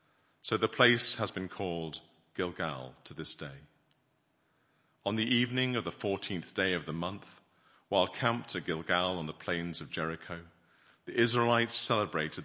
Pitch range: 80-110 Hz